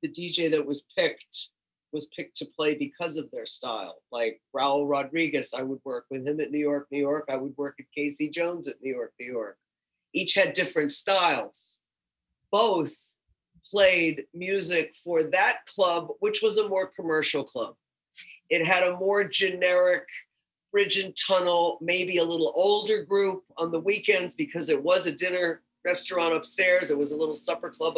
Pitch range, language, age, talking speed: 155-195 Hz, English, 40-59, 175 wpm